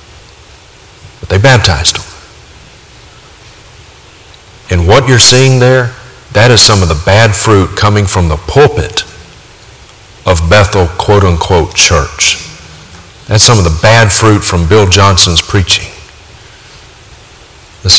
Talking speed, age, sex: 115 wpm, 50-69, male